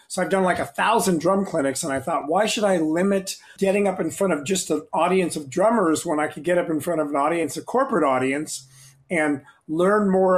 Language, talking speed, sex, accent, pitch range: English, 235 wpm, male, American, 150-195 Hz